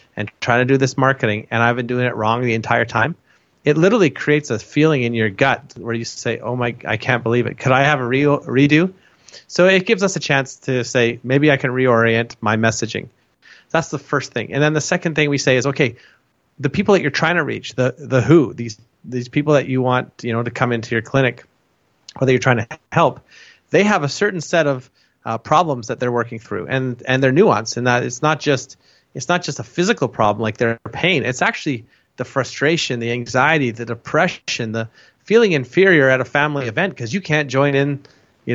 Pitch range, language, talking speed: 120-145 Hz, English, 225 wpm